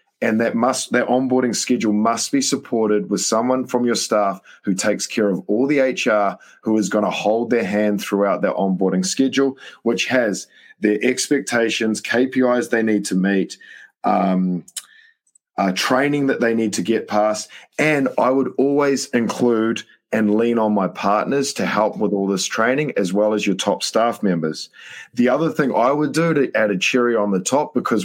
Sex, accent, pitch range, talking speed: male, Australian, 105-130 Hz, 190 wpm